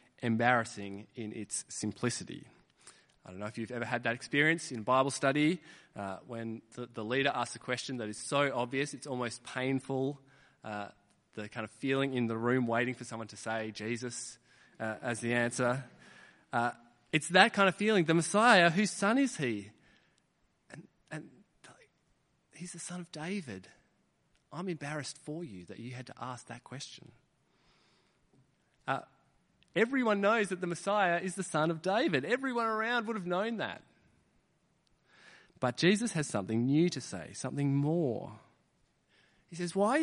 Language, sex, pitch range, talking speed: English, male, 125-190 Hz, 160 wpm